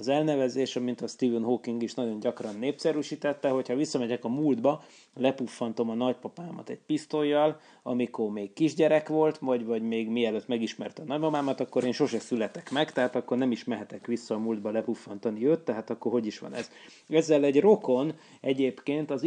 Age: 30-49